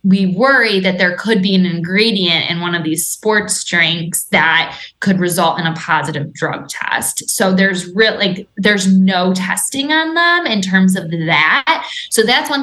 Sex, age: female, 20-39